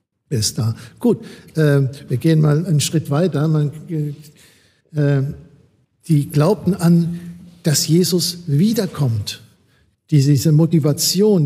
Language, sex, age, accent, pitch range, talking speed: German, male, 60-79, German, 140-175 Hz, 90 wpm